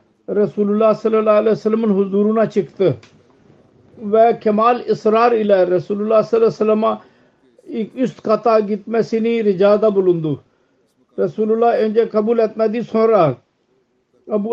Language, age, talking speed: Turkish, 50-69, 110 wpm